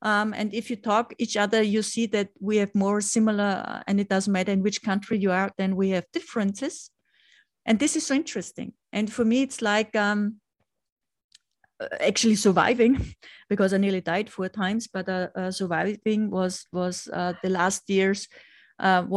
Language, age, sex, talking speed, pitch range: English, 30-49, female, 180 wpm, 190-230 Hz